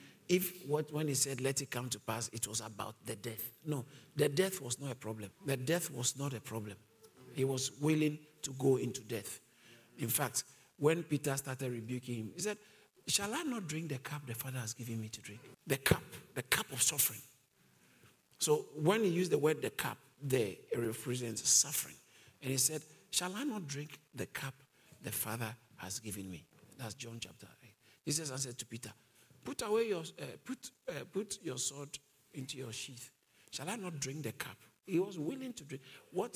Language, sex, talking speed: English, male, 200 wpm